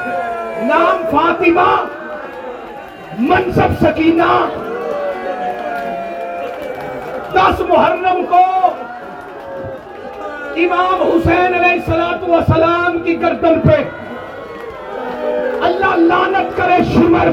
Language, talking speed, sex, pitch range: Urdu, 65 wpm, male, 325-365 Hz